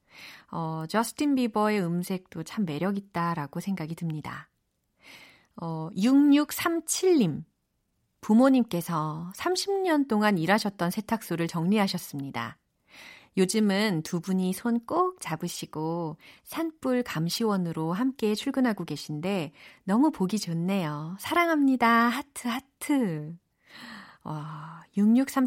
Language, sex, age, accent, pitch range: Korean, female, 40-59, native, 165-230 Hz